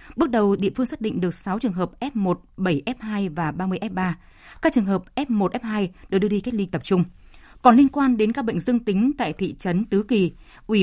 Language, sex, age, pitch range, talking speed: Vietnamese, female, 20-39, 180-230 Hz, 225 wpm